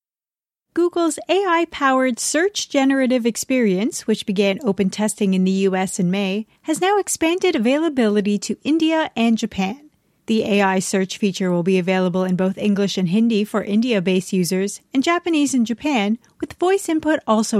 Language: English